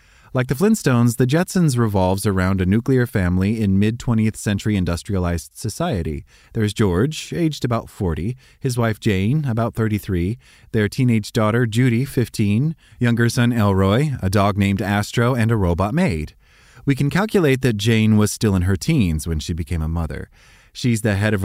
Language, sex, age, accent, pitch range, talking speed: English, male, 30-49, American, 95-120 Hz, 170 wpm